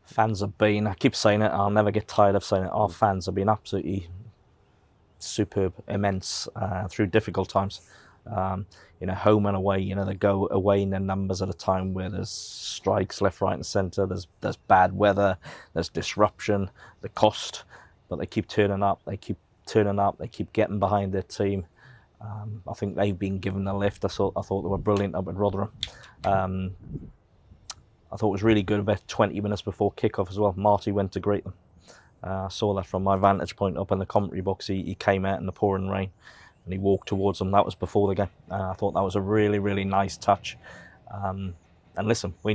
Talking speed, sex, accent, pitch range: 215 wpm, male, British, 95-105 Hz